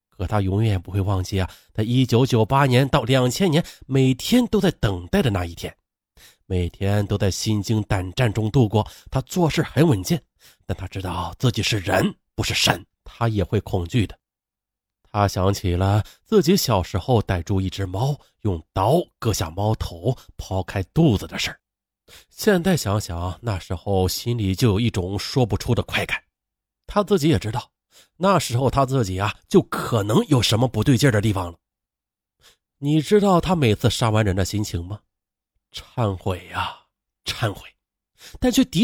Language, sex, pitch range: Chinese, male, 95-130 Hz